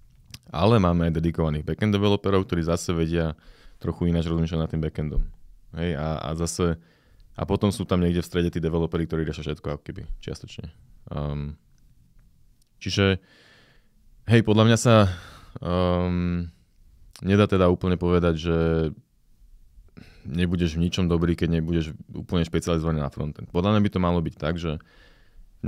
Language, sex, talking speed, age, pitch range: Slovak, male, 150 wpm, 20-39, 80-90 Hz